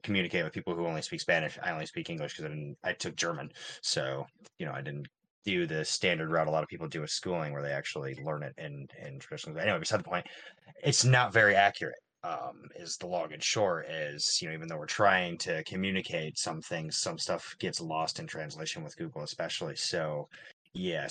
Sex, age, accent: male, 30-49, American